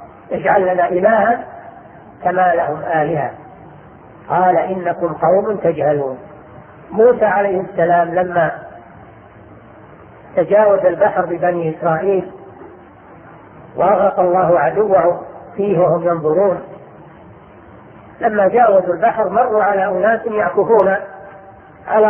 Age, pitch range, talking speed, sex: 50-69, 180-235 Hz, 85 wpm, female